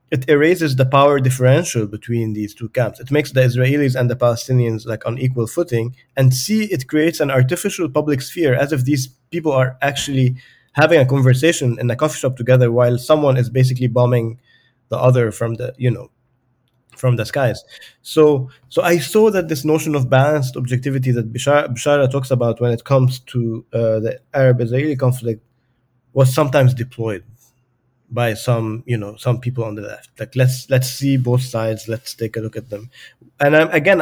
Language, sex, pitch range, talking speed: English, male, 120-140 Hz, 185 wpm